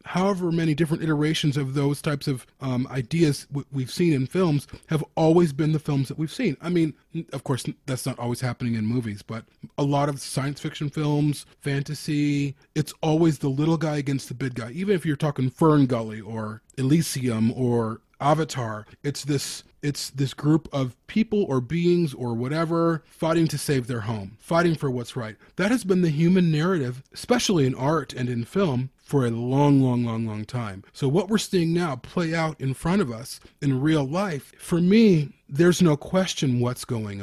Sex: male